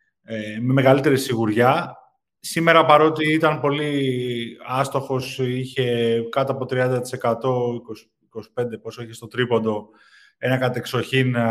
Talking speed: 100 wpm